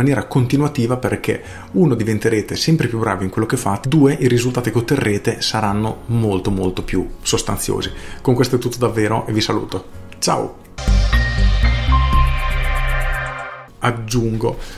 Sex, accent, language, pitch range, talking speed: male, native, Italian, 100-125 Hz, 130 wpm